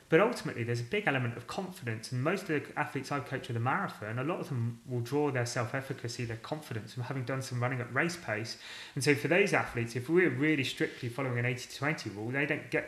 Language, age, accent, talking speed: English, 30-49, British, 240 wpm